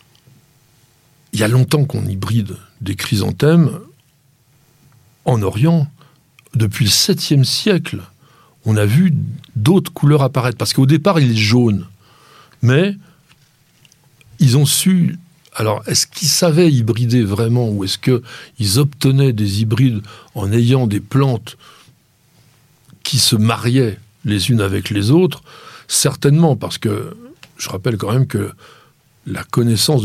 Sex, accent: male, French